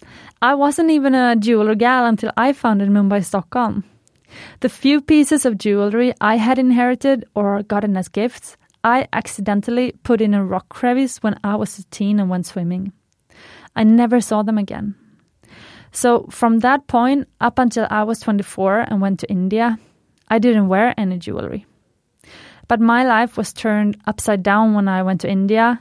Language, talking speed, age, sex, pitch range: English, 170 wpm, 20-39, female, 205-245 Hz